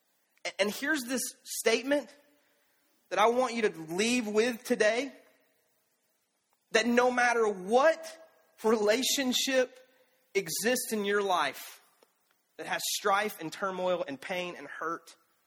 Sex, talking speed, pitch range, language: male, 115 wpm, 180-245 Hz, English